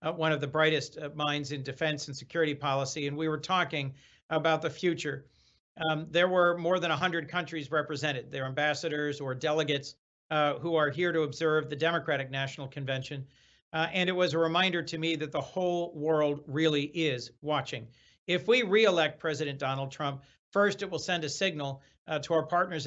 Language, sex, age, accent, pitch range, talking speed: English, male, 50-69, American, 145-165 Hz, 190 wpm